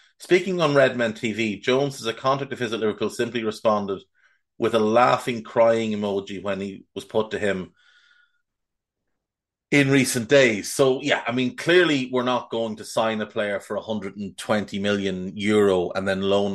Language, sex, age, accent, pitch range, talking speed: English, male, 30-49, Irish, 100-125 Hz, 170 wpm